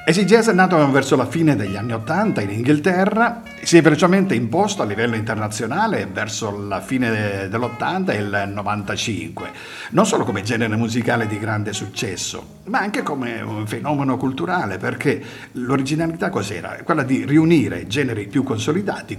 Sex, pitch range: male, 110-155 Hz